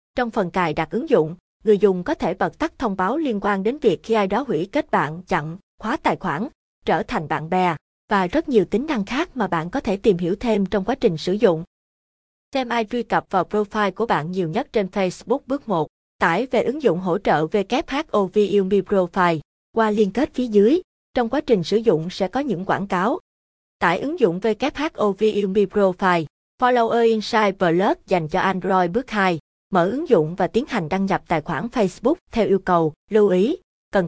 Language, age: Vietnamese, 20-39